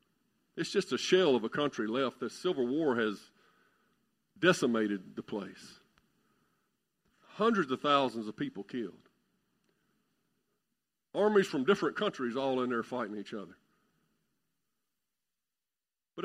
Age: 50-69